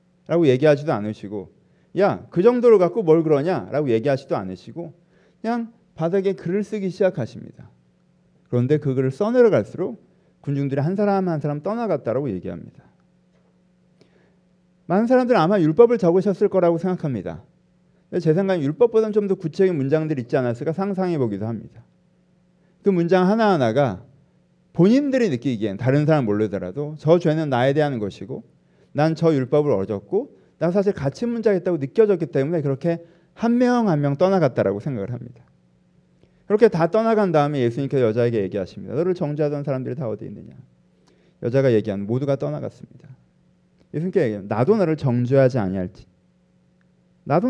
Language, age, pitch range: Korean, 40-59, 125-185 Hz